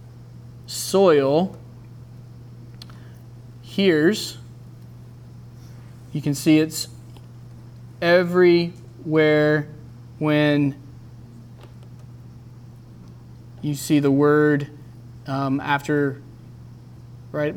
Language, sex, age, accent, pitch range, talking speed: English, male, 20-39, American, 120-150 Hz, 50 wpm